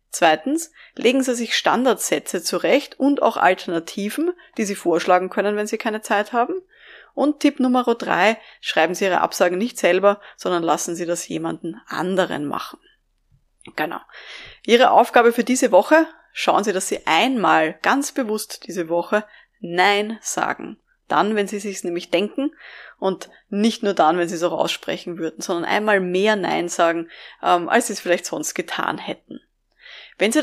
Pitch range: 185-240 Hz